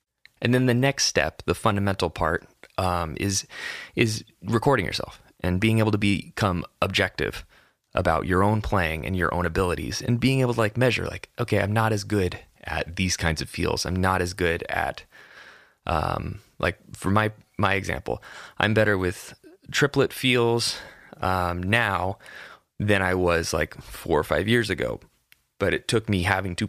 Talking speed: 175 wpm